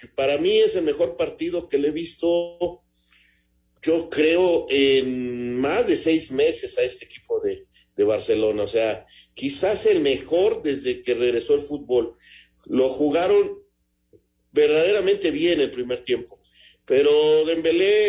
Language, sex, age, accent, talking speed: Spanish, male, 50-69, Mexican, 140 wpm